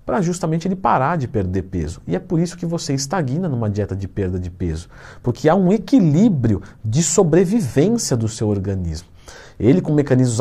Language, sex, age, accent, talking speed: Portuguese, male, 50-69, Brazilian, 185 wpm